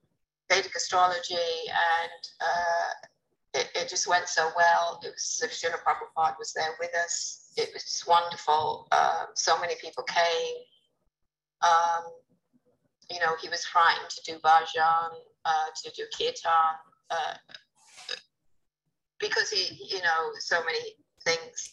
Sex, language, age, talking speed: female, English, 30-49, 130 wpm